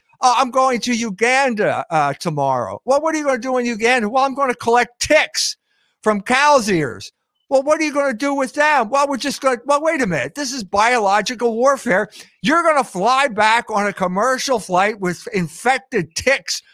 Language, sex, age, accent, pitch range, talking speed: English, male, 50-69, American, 190-260 Hz, 205 wpm